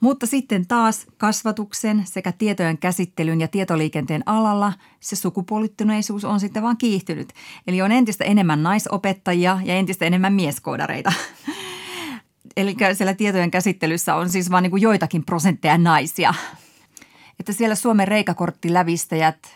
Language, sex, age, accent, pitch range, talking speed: Finnish, female, 30-49, native, 165-210 Hz, 130 wpm